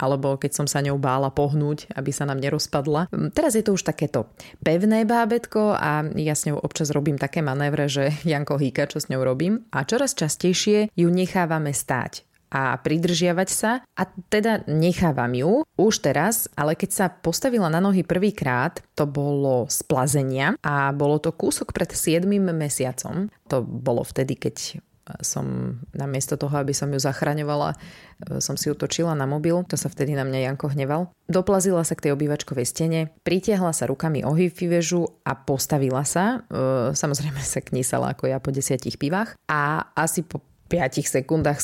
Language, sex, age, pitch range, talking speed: Slovak, female, 20-39, 140-175 Hz, 165 wpm